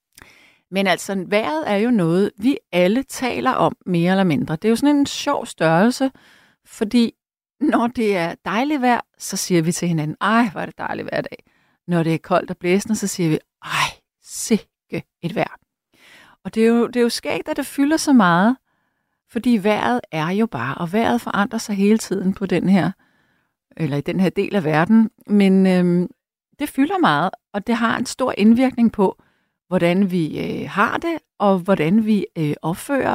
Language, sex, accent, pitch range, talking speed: Danish, female, native, 175-235 Hz, 190 wpm